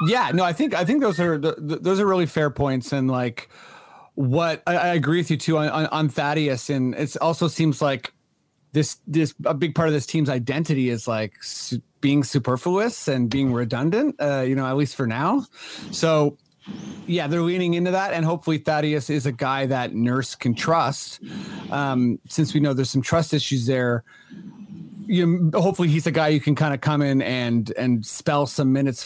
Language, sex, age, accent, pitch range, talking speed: English, male, 30-49, American, 140-175 Hz, 200 wpm